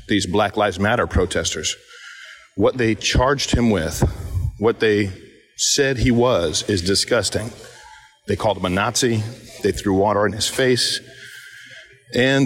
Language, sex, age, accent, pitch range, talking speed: English, male, 40-59, American, 95-115 Hz, 140 wpm